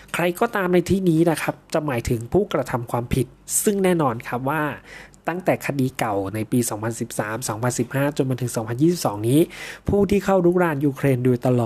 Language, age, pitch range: Thai, 20-39, 115-150 Hz